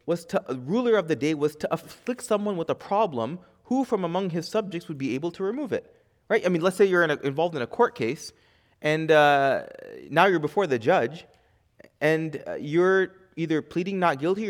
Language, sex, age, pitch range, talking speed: English, male, 20-39, 150-195 Hz, 210 wpm